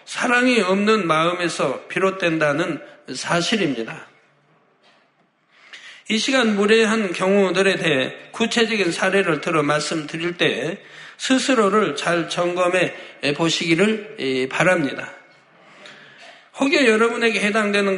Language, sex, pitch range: Korean, male, 175-220 Hz